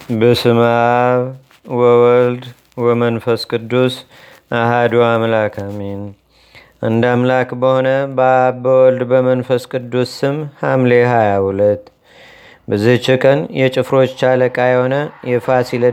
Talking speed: 85 wpm